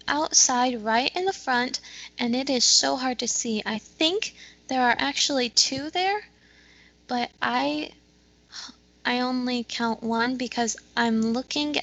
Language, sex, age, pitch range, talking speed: English, female, 10-29, 230-290 Hz, 140 wpm